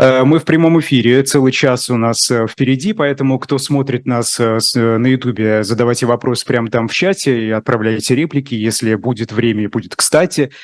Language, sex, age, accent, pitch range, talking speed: Russian, male, 20-39, native, 115-130 Hz, 165 wpm